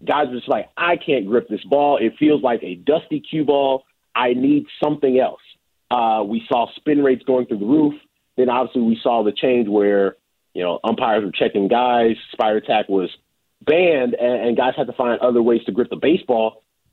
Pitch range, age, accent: 115-155 Hz, 30-49, American